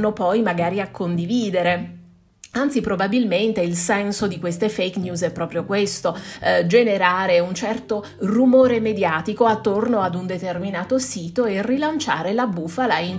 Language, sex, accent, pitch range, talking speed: Italian, female, native, 175-245 Hz, 140 wpm